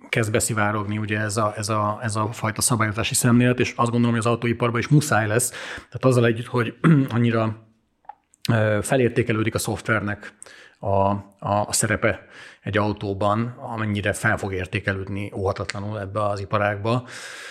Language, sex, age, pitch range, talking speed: Hungarian, male, 40-59, 100-115 Hz, 145 wpm